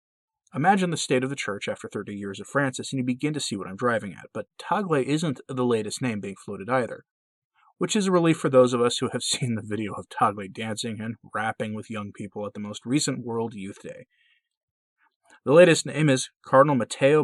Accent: American